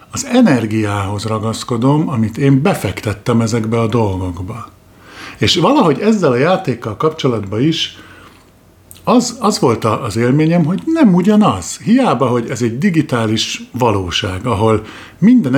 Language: Hungarian